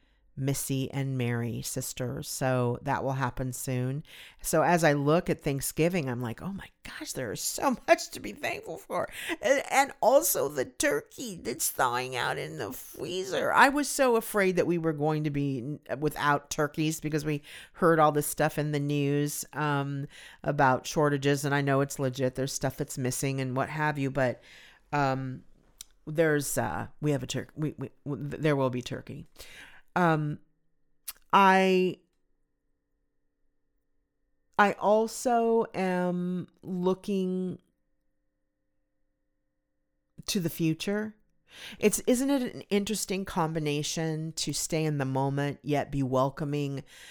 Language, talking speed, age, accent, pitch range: English, 140 wpm, 40-59, American, 135-165 Hz